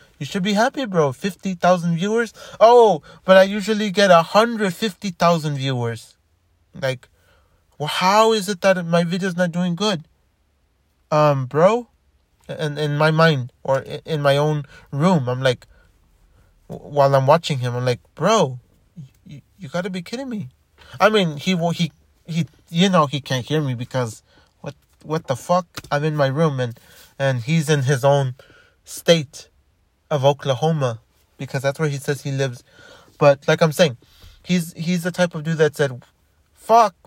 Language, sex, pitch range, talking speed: English, male, 125-180 Hz, 165 wpm